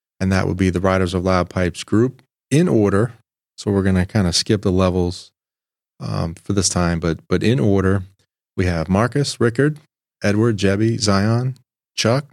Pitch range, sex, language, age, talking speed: 95-115 Hz, male, English, 30-49, 180 wpm